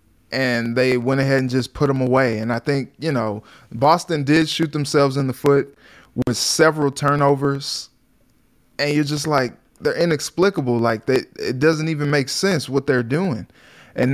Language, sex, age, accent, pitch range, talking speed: English, male, 20-39, American, 125-150 Hz, 175 wpm